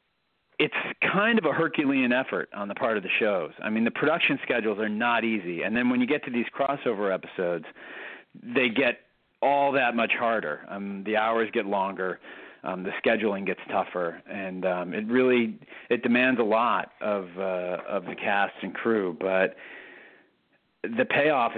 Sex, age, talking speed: male, 40-59, 175 wpm